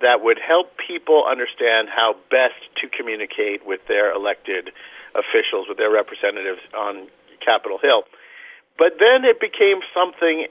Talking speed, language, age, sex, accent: 135 wpm, English, 50-69, male, American